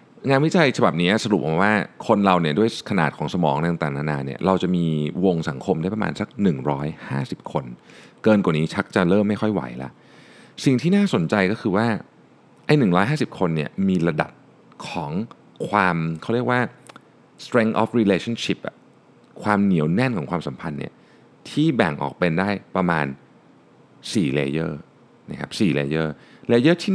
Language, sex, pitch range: Thai, male, 75-110 Hz